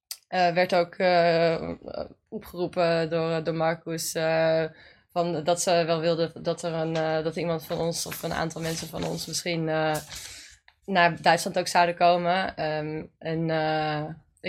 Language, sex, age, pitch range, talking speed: Dutch, female, 20-39, 160-175 Hz, 155 wpm